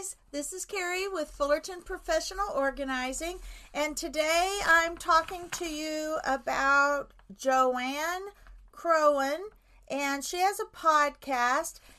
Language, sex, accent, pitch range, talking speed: English, female, American, 250-315 Hz, 105 wpm